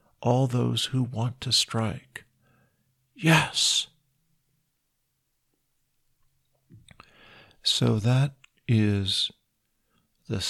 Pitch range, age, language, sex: 110-135 Hz, 50-69, Thai, male